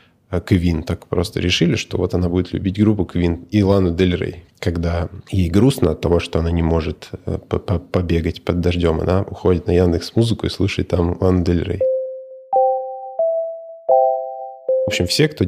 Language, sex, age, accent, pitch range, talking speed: Russian, male, 20-39, native, 90-120 Hz, 165 wpm